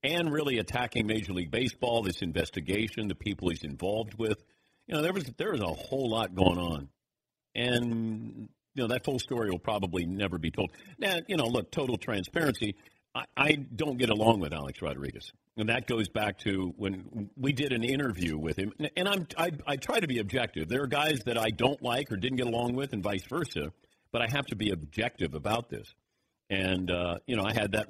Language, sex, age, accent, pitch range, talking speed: English, male, 50-69, American, 100-130 Hz, 215 wpm